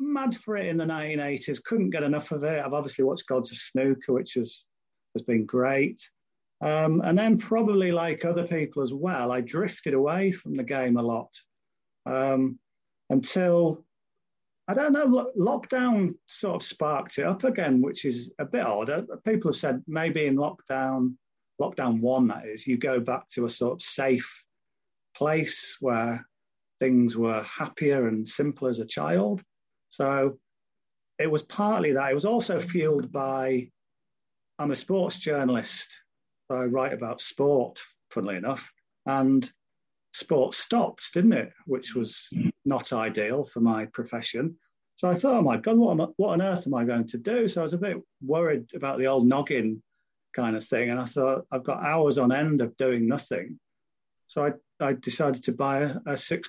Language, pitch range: English, 125-170 Hz